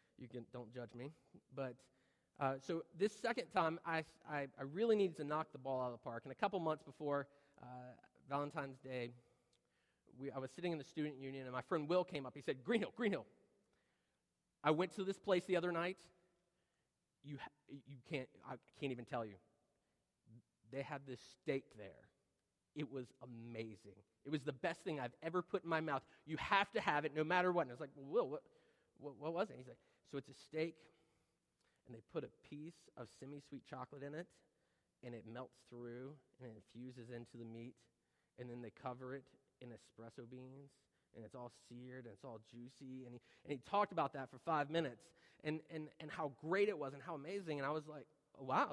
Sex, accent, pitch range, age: male, American, 125-165 Hz, 30-49